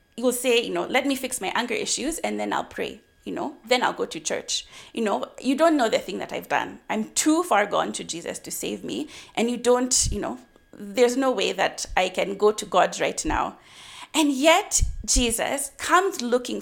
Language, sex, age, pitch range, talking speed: English, female, 30-49, 220-295 Hz, 220 wpm